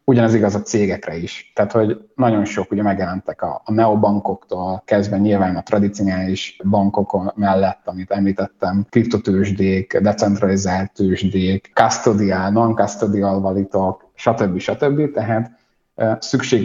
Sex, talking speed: male, 120 wpm